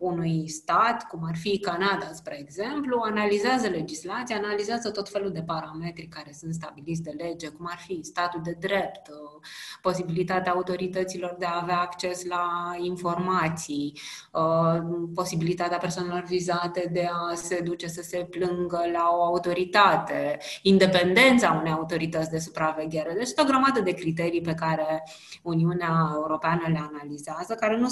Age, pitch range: 20-39, 165-200 Hz